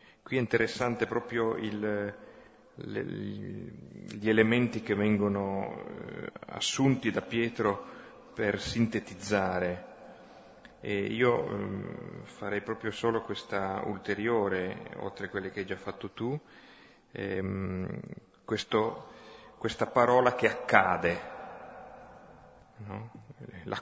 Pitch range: 100-120 Hz